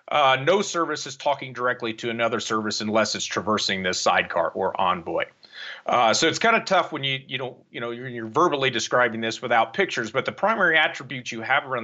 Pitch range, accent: 115-150 Hz, American